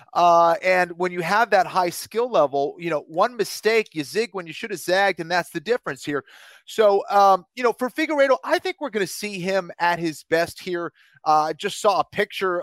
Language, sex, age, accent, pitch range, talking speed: English, male, 30-49, American, 160-200 Hz, 225 wpm